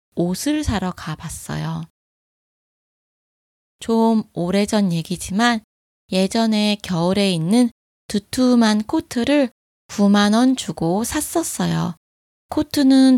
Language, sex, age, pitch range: Korean, female, 20-39, 170-250 Hz